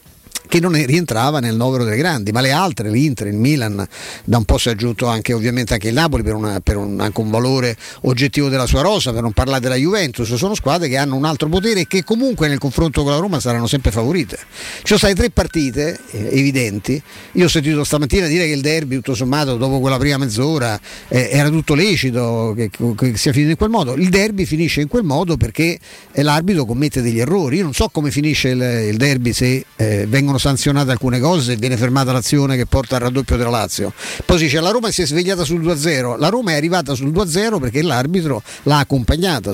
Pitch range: 125-175 Hz